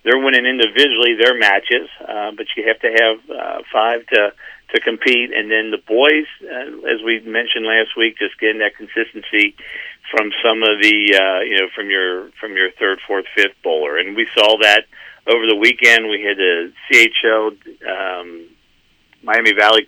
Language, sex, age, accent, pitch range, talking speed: English, male, 50-69, American, 95-120 Hz, 175 wpm